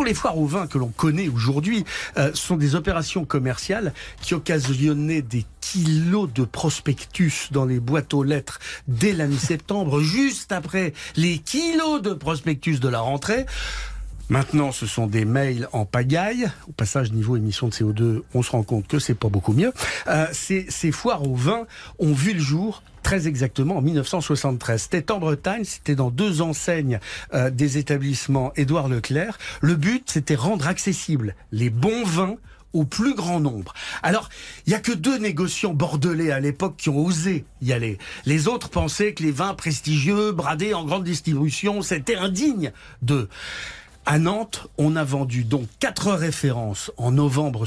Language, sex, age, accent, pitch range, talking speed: French, male, 60-79, French, 135-190 Hz, 170 wpm